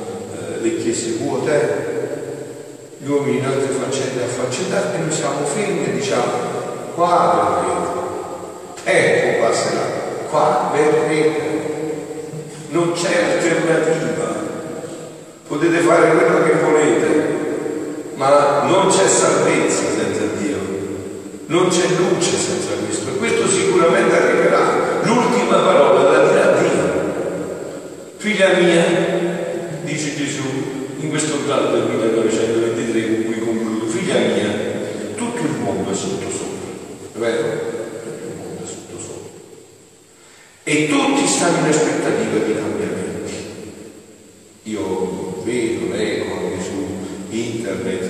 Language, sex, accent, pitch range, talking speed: Italian, male, native, 115-175 Hz, 110 wpm